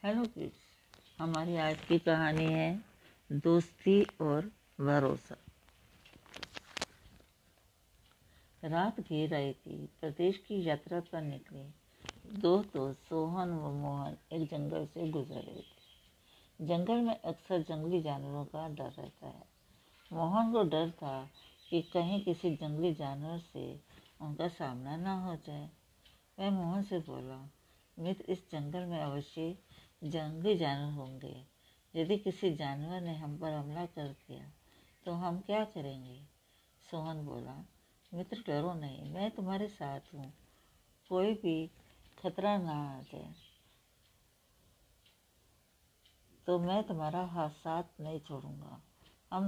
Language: Hindi